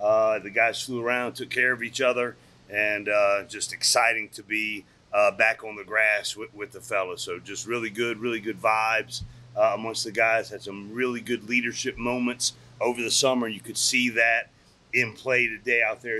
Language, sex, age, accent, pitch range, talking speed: English, male, 40-59, American, 115-125 Hz, 200 wpm